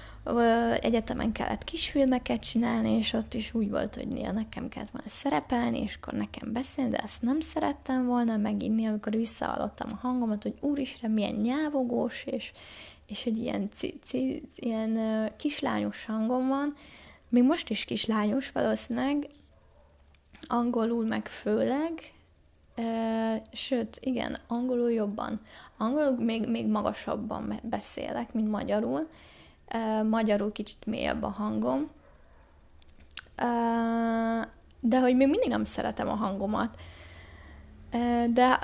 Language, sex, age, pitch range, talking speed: Hungarian, female, 20-39, 215-260 Hz, 115 wpm